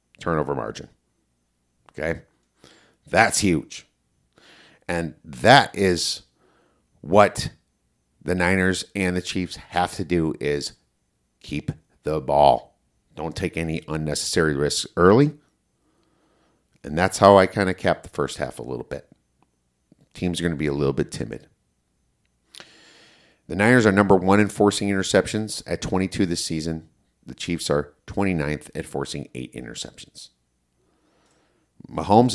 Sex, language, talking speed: male, English, 130 wpm